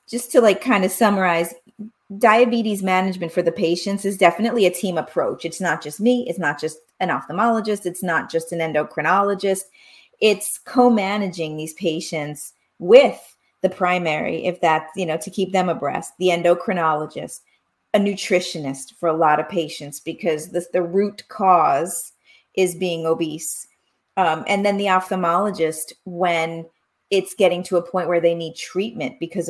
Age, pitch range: 30-49, 165-215 Hz